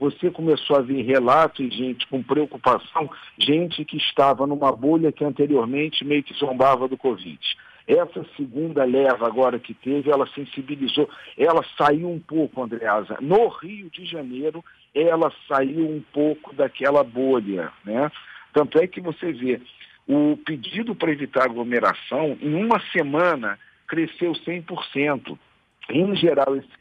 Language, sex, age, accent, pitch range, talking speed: Portuguese, male, 50-69, Brazilian, 125-160 Hz, 140 wpm